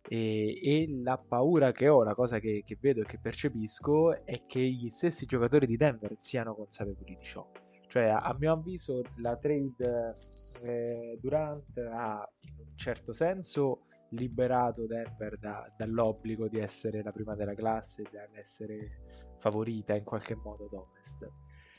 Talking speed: 150 wpm